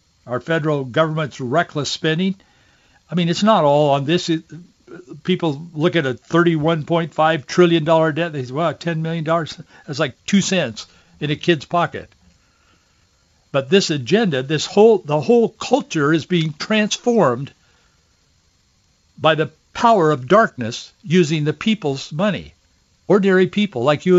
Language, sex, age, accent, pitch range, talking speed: English, male, 60-79, American, 145-180 Hz, 155 wpm